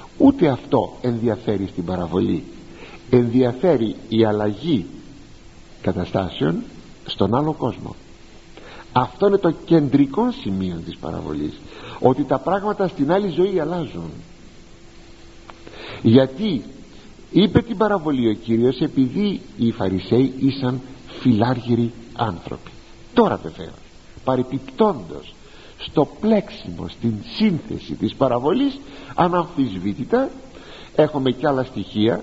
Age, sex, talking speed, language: 60-79, male, 95 wpm, Greek